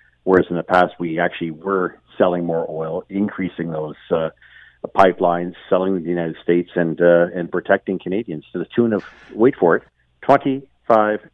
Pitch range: 85-105 Hz